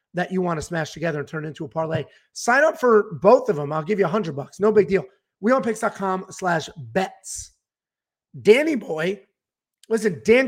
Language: English